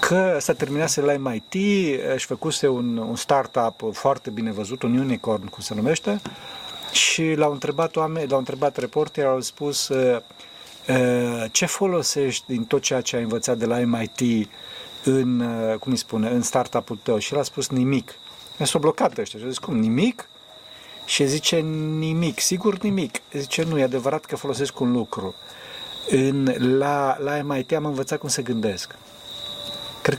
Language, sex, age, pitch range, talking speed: Romanian, male, 40-59, 120-145 Hz, 165 wpm